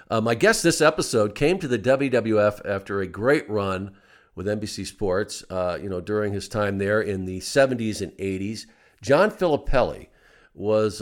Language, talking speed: English, 170 wpm